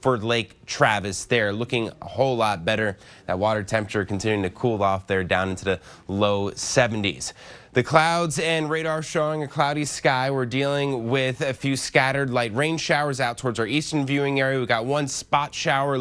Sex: male